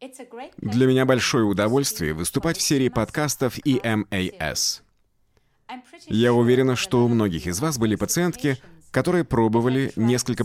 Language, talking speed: English, 120 wpm